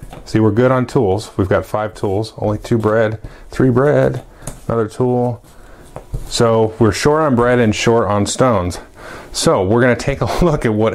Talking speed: 185 wpm